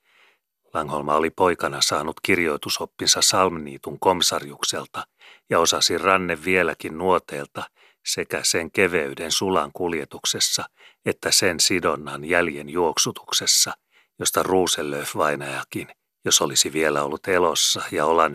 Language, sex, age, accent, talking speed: Finnish, male, 40-59, native, 100 wpm